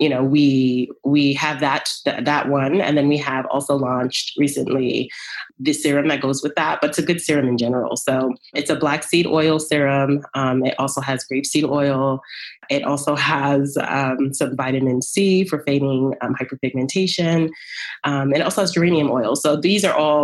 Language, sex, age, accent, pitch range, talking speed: English, female, 20-39, American, 135-155 Hz, 185 wpm